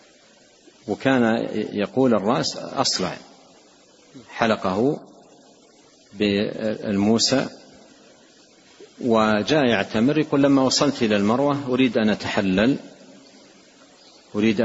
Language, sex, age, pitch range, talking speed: Arabic, male, 50-69, 105-130 Hz, 70 wpm